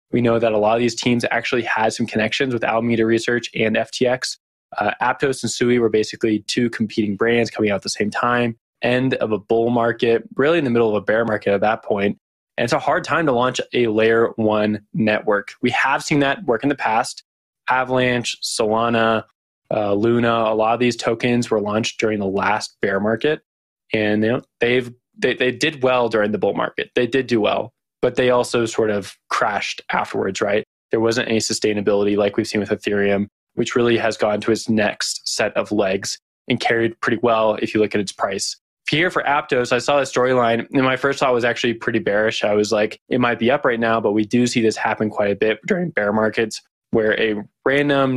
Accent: American